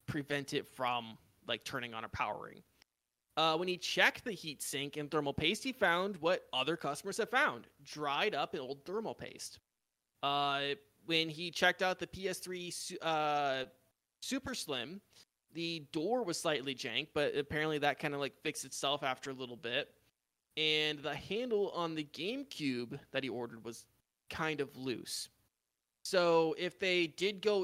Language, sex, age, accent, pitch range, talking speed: English, male, 20-39, American, 140-180 Hz, 165 wpm